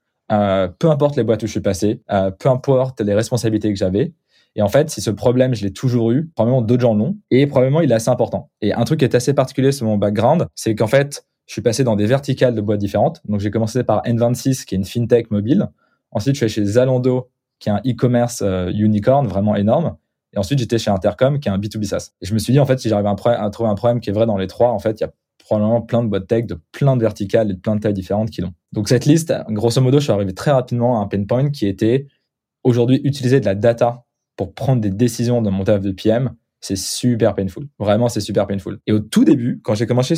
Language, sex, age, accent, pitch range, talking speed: French, male, 20-39, French, 105-130 Hz, 265 wpm